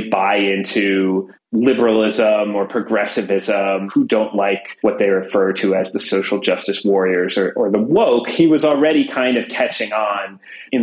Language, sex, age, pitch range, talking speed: English, male, 30-49, 100-130 Hz, 160 wpm